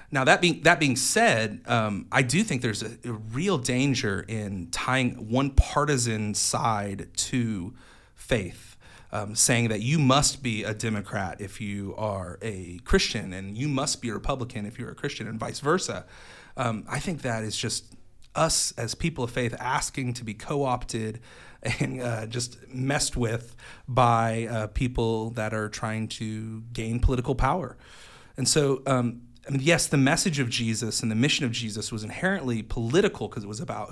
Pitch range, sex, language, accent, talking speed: 110-135 Hz, male, English, American, 175 wpm